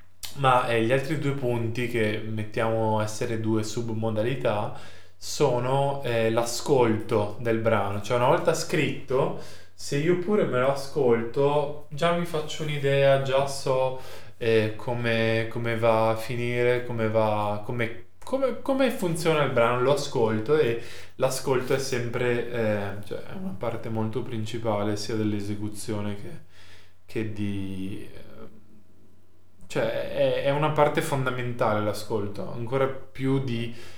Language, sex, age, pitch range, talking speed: Italian, male, 20-39, 105-130 Hz, 115 wpm